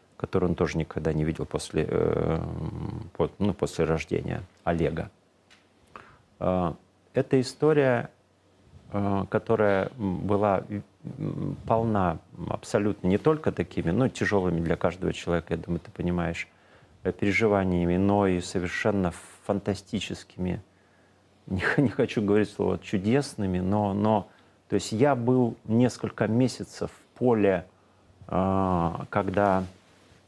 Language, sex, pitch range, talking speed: Russian, male, 90-110 Hz, 100 wpm